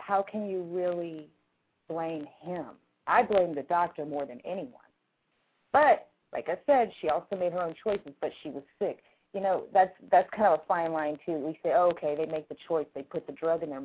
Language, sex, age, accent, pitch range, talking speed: English, female, 30-49, American, 150-190 Hz, 220 wpm